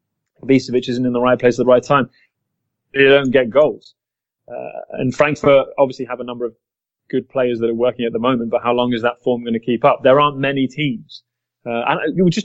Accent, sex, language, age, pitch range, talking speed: British, male, English, 30-49, 120-155 Hz, 230 wpm